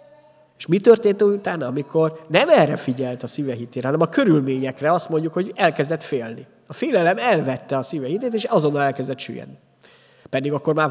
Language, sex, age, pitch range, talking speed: Hungarian, male, 30-49, 125-160 Hz, 175 wpm